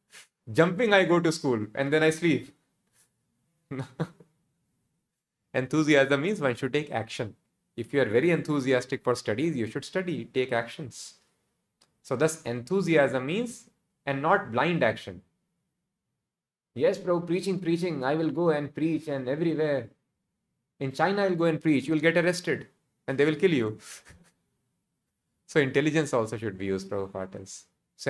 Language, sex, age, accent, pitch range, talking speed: English, male, 20-39, Indian, 115-160 Hz, 150 wpm